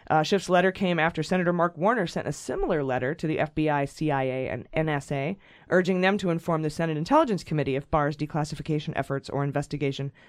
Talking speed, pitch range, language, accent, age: 185 wpm, 150-180 Hz, English, American, 30-49